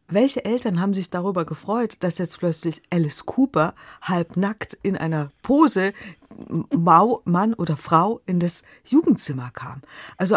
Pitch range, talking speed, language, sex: 170-225 Hz, 140 wpm, German, female